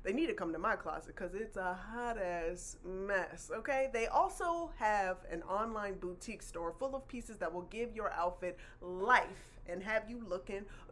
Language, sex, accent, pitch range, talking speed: English, female, American, 190-275 Hz, 185 wpm